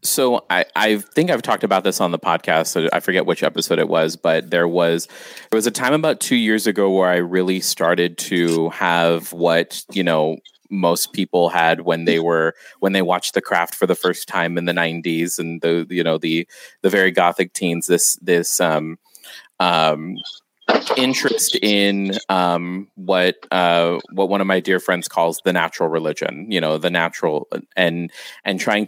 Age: 30-49